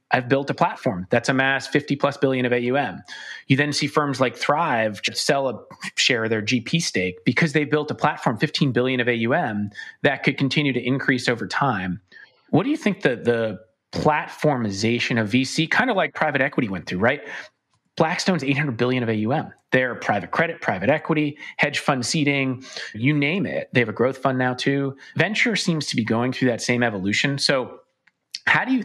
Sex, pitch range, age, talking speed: male, 125-150 Hz, 30-49, 195 wpm